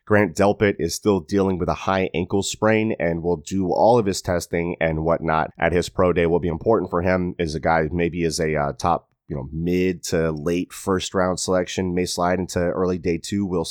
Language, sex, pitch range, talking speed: English, male, 80-100 Hz, 225 wpm